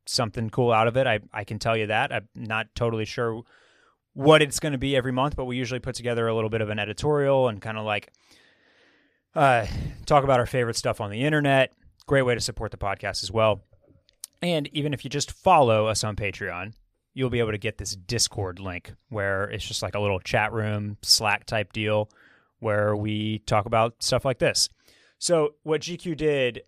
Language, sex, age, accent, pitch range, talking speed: English, male, 20-39, American, 105-130 Hz, 210 wpm